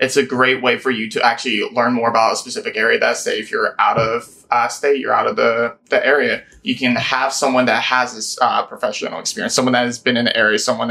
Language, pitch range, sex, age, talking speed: English, 125-155 Hz, male, 20-39, 255 wpm